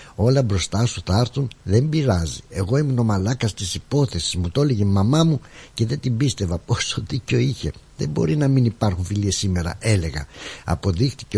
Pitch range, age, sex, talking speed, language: 90-120 Hz, 60-79, male, 180 wpm, Greek